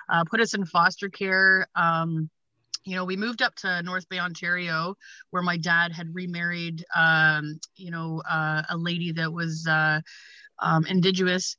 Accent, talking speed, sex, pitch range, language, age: American, 165 wpm, female, 170-200 Hz, English, 30-49